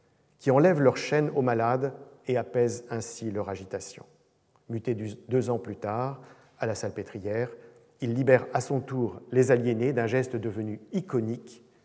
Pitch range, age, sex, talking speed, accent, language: 115-145 Hz, 50-69, male, 150 wpm, French, French